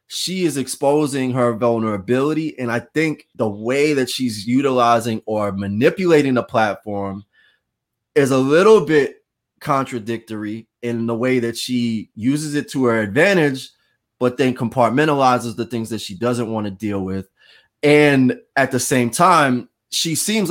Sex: male